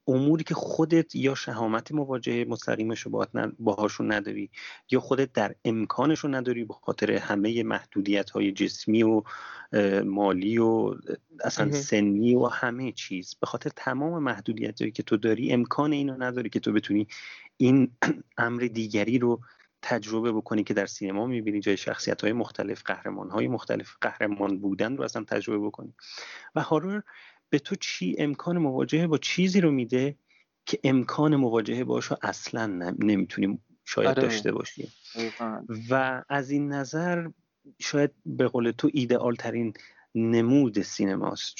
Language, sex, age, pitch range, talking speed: Persian, male, 30-49, 105-130 Hz, 145 wpm